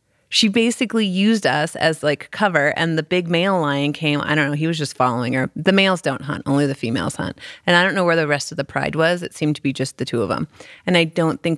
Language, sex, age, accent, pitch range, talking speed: English, female, 30-49, American, 140-175 Hz, 275 wpm